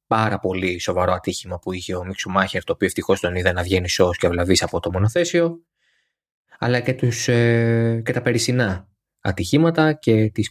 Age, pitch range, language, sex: 20-39, 95-120 Hz, Greek, male